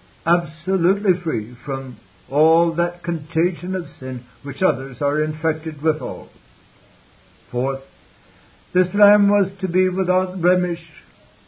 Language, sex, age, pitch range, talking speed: English, male, 60-79, 135-170 Hz, 115 wpm